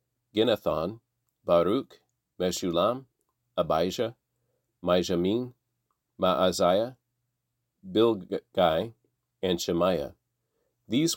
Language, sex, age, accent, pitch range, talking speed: English, male, 40-59, American, 105-125 Hz, 55 wpm